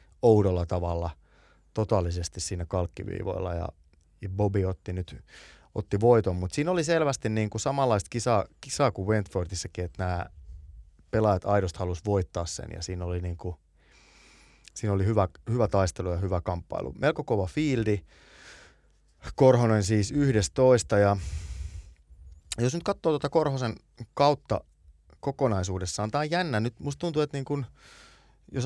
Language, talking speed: Finnish, 135 wpm